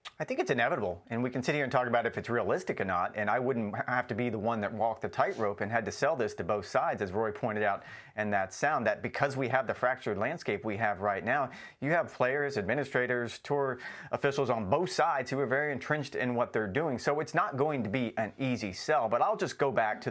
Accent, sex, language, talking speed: American, male, English, 260 wpm